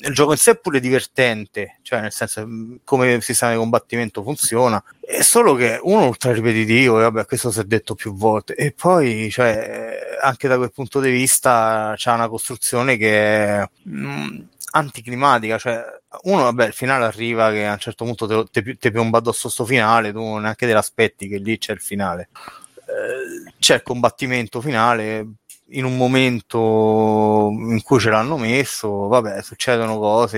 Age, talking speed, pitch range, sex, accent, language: 30-49, 180 wpm, 110-130 Hz, male, native, Italian